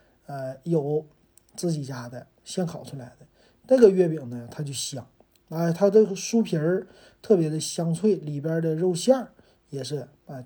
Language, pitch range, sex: Chinese, 140-185 Hz, male